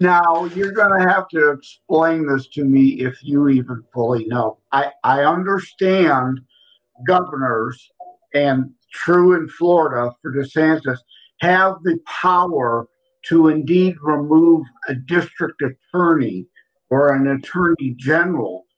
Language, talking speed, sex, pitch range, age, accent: English, 120 wpm, male, 135-175 Hz, 50-69, American